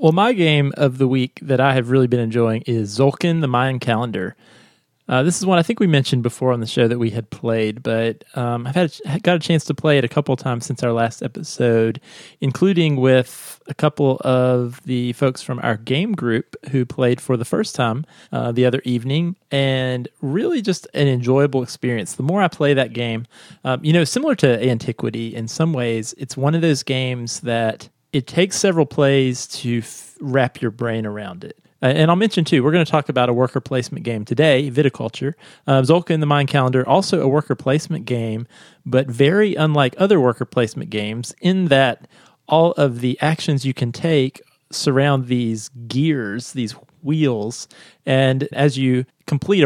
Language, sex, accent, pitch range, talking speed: English, male, American, 125-150 Hz, 195 wpm